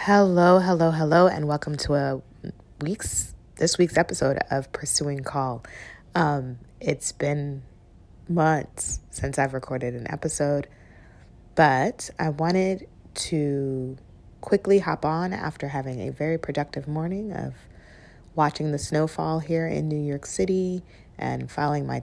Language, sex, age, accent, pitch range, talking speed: English, female, 30-49, American, 130-160 Hz, 130 wpm